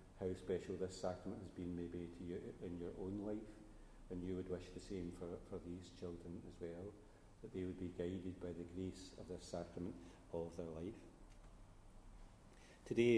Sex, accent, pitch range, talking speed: male, British, 85-100 Hz, 185 wpm